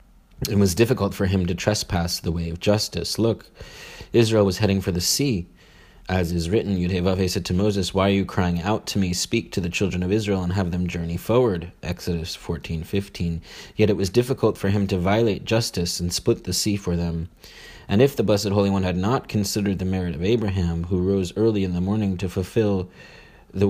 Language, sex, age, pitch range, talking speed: English, male, 30-49, 90-105 Hz, 210 wpm